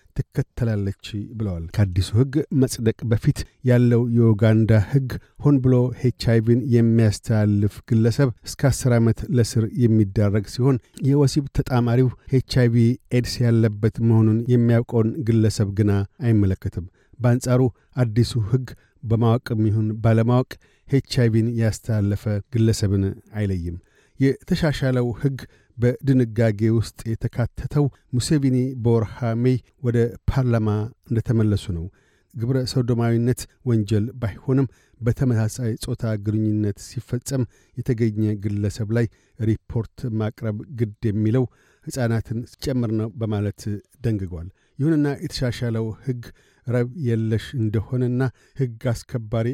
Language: Amharic